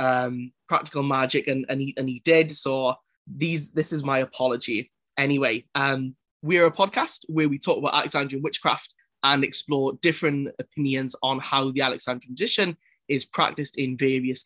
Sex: male